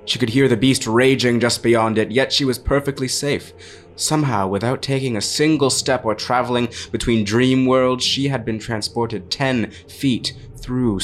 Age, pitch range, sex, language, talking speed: 20-39, 105-130 Hz, male, English, 175 wpm